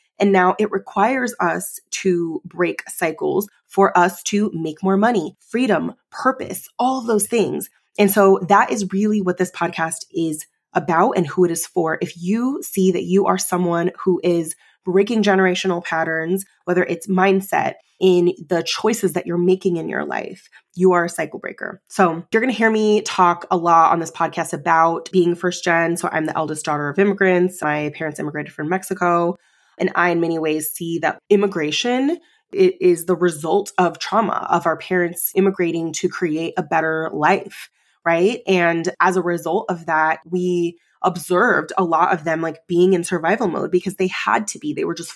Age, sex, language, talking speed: 20-39, female, English, 185 wpm